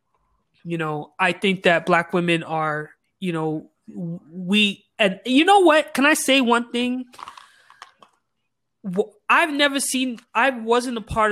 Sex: male